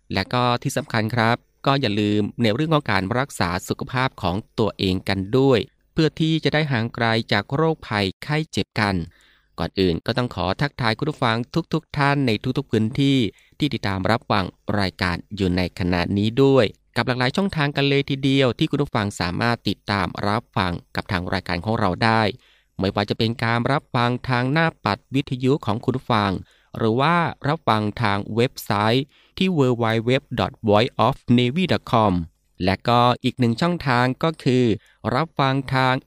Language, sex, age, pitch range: Thai, male, 20-39, 105-135 Hz